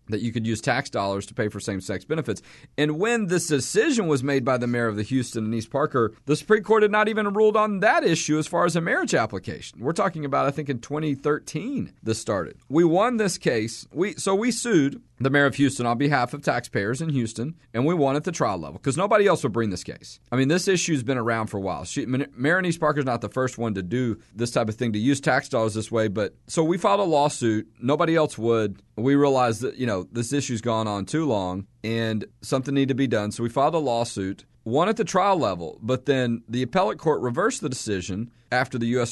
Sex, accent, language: male, American, English